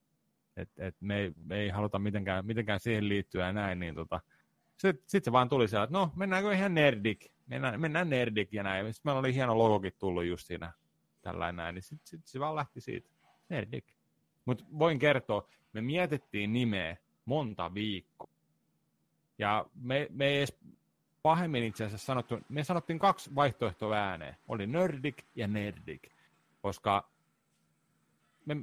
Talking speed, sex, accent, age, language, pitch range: 155 wpm, male, native, 30-49, Finnish, 90-130 Hz